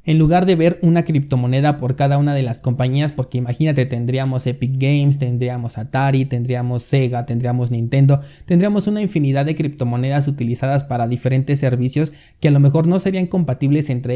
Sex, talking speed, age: male, 170 wpm, 20-39